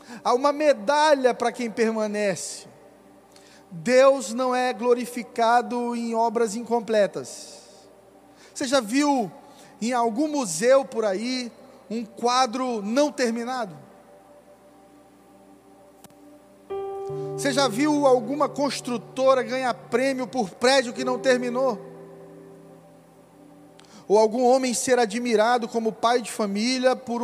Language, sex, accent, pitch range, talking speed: Portuguese, male, Brazilian, 180-245 Hz, 105 wpm